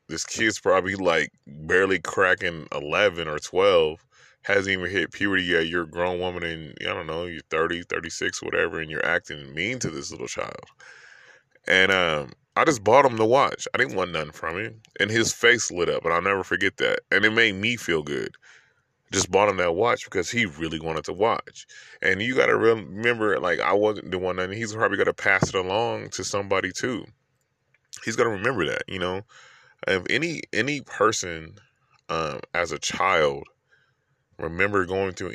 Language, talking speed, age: English, 195 wpm, 20-39